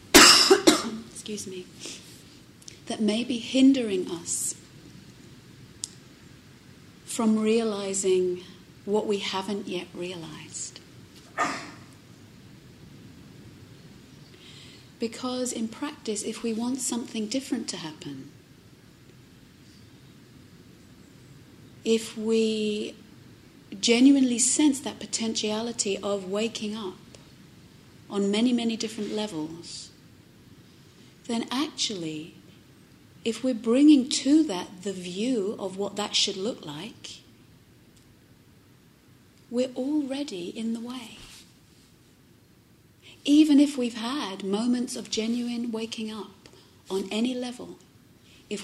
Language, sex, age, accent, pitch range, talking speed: English, female, 40-59, British, 190-235 Hz, 85 wpm